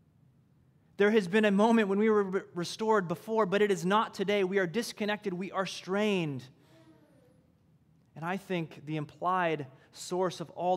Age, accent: 30-49, American